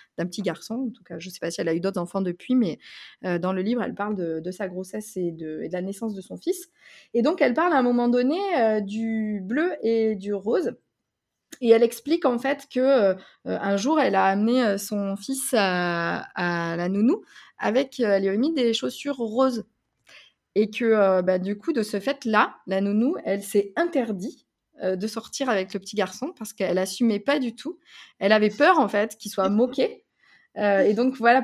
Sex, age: female, 20-39